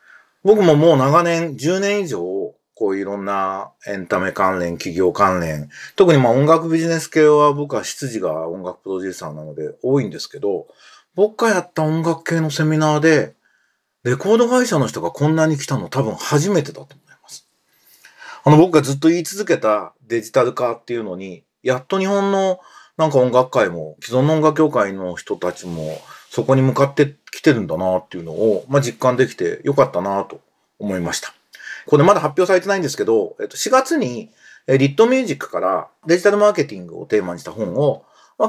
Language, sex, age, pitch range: Japanese, male, 30-49, 110-185 Hz